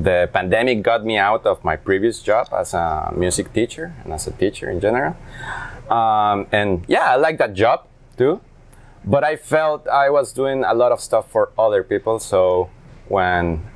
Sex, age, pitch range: male, 20-39, 90-120 Hz